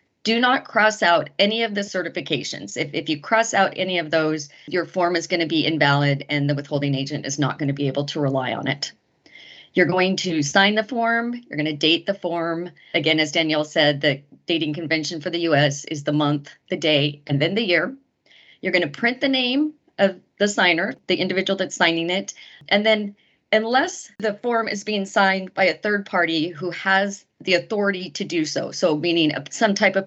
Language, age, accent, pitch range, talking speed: English, 40-59, American, 155-205 Hz, 210 wpm